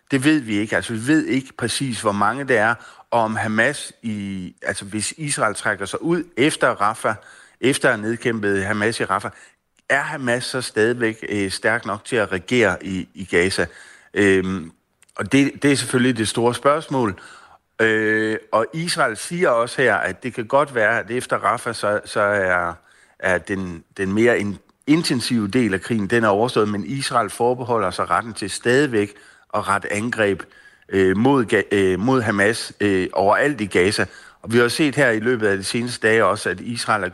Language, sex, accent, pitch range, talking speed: Danish, male, native, 100-125 Hz, 185 wpm